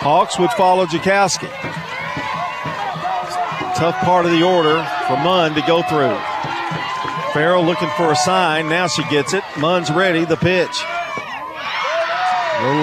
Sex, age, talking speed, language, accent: male, 50-69, 130 wpm, English, American